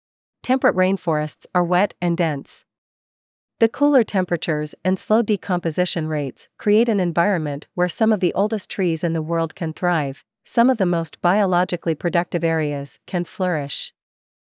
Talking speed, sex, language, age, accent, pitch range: 150 wpm, female, English, 40-59, American, 160-195 Hz